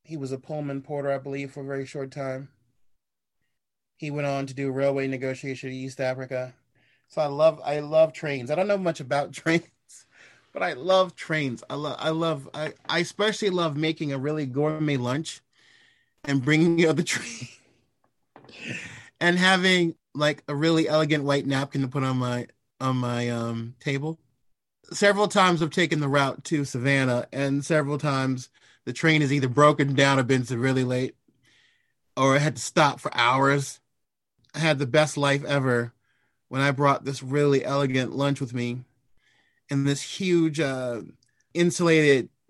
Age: 30-49